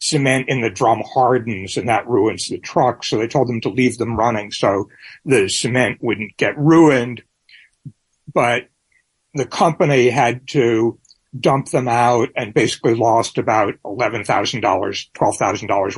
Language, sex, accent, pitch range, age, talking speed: English, male, American, 115-145 Hz, 60-79, 145 wpm